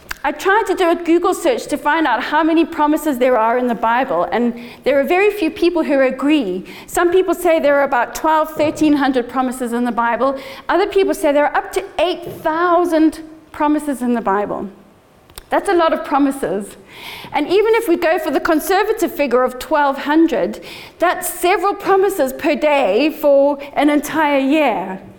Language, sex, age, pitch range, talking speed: English, female, 30-49, 260-340 Hz, 180 wpm